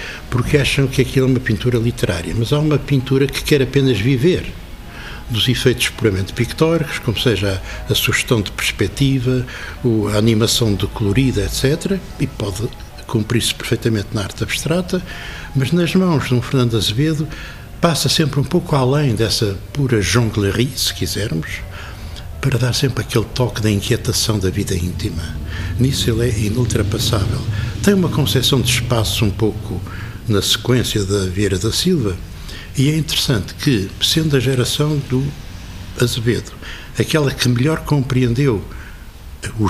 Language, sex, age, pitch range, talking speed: Portuguese, male, 60-79, 100-135 Hz, 145 wpm